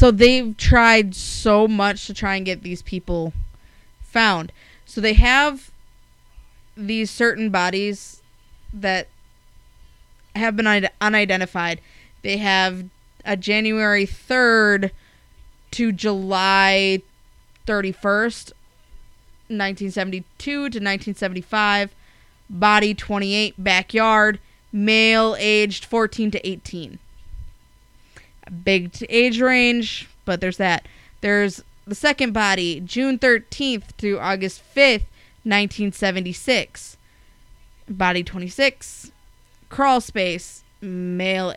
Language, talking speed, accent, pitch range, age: English, 90 wpm, American, 185-220 Hz, 20-39